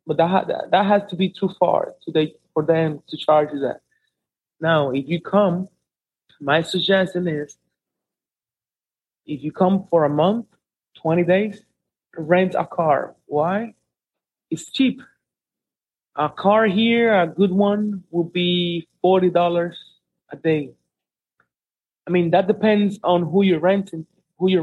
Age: 30-49